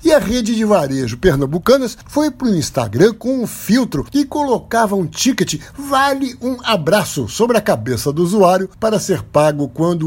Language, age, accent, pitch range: Portuguese, 60-79, Brazilian, 140-215 Hz